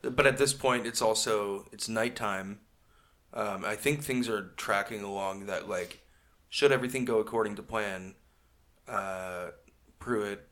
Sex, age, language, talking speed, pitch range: male, 30-49, English, 145 wpm, 95-140 Hz